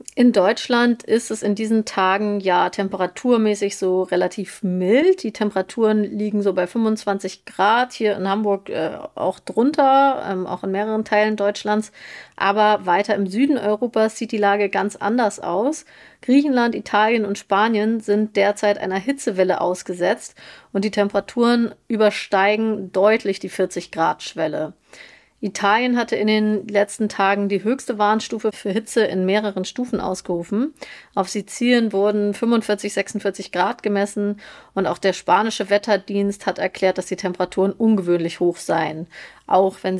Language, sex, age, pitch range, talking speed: German, female, 30-49, 185-215 Hz, 145 wpm